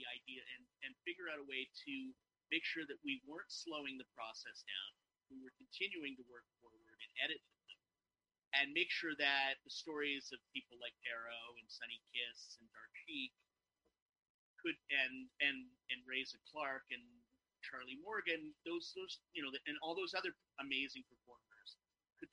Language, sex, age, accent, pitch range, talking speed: English, male, 30-49, American, 125-145 Hz, 170 wpm